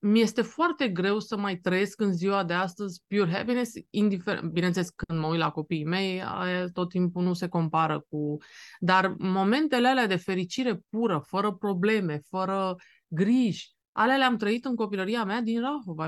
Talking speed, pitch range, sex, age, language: 165 wpm, 170-225 Hz, female, 20-39, Romanian